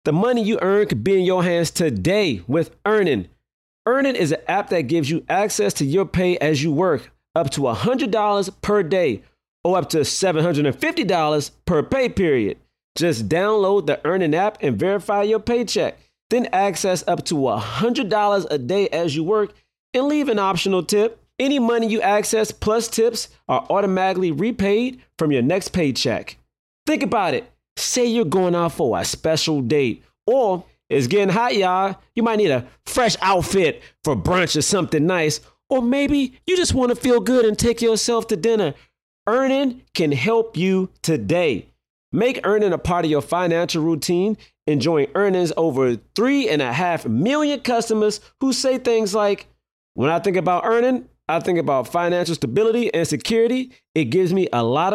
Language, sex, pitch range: English, male, 165-230 Hz